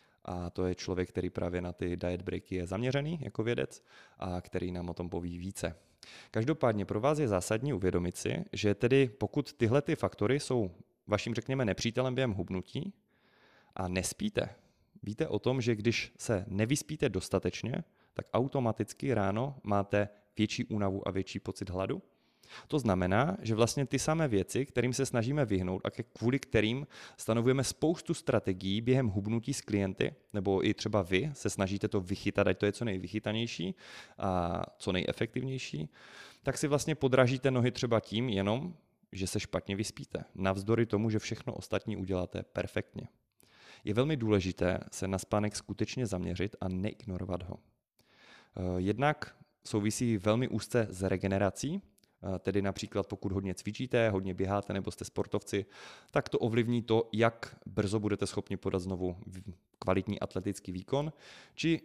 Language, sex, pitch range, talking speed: Czech, male, 95-120 Hz, 150 wpm